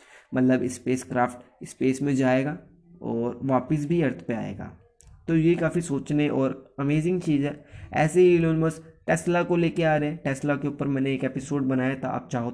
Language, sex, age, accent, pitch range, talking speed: Hindi, male, 20-39, native, 125-160 Hz, 180 wpm